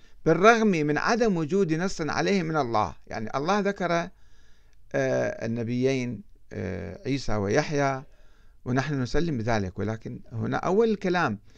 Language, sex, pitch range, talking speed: Arabic, male, 105-145 Hz, 110 wpm